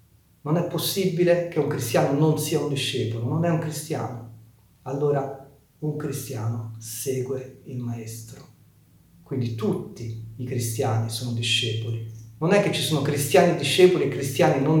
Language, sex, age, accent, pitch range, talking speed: Italian, male, 40-59, native, 115-155 Hz, 145 wpm